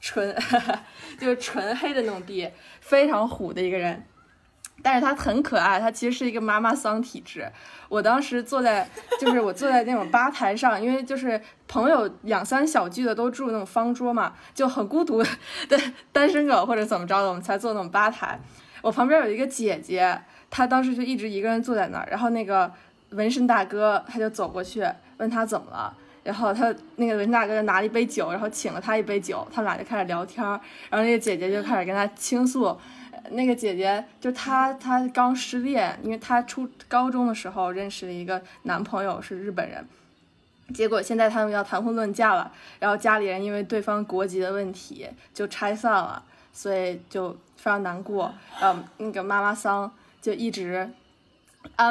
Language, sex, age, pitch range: Chinese, female, 20-39, 200-250 Hz